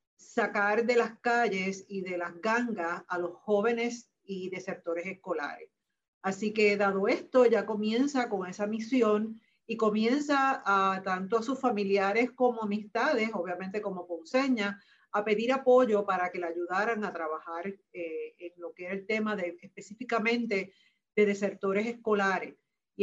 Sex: female